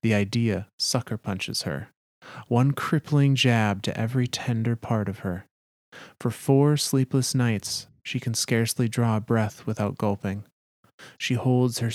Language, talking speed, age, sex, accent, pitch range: English, 140 wpm, 30-49, male, American, 105-125 Hz